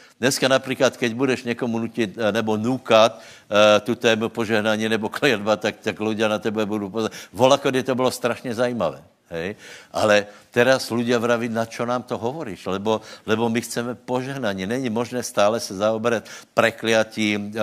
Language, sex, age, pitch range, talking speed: Slovak, male, 60-79, 105-125 Hz, 155 wpm